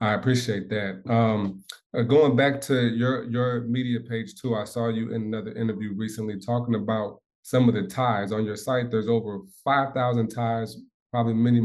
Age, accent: 20-39, American